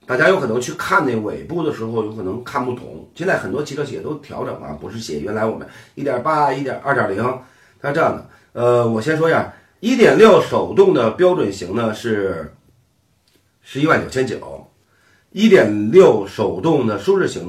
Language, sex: Chinese, male